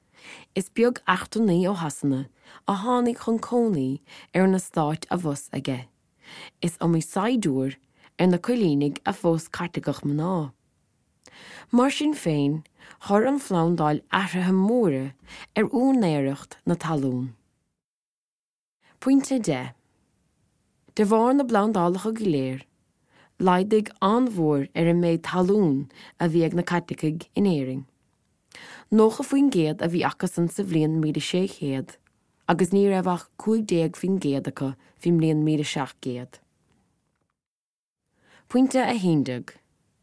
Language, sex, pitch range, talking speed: Slovak, female, 145-200 Hz, 80 wpm